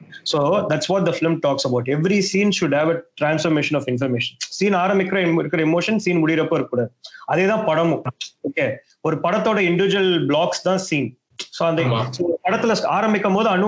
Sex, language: male, Tamil